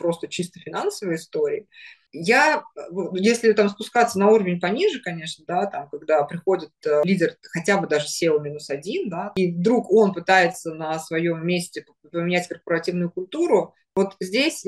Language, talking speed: Russian, 145 wpm